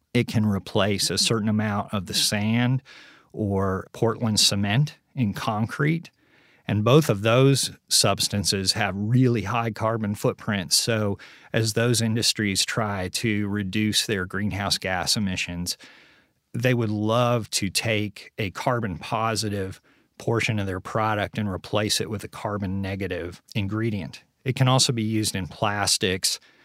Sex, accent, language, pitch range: male, American, English, 100-115 Hz